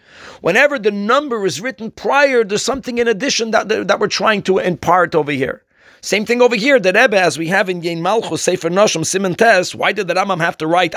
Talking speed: 220 wpm